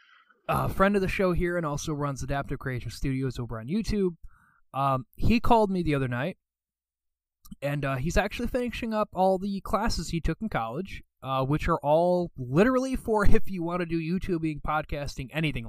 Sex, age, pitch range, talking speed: male, 20-39, 130-175 Hz, 185 wpm